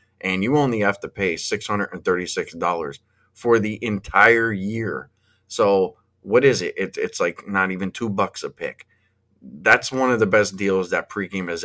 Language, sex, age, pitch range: English, male, 30-49, 95-115 Hz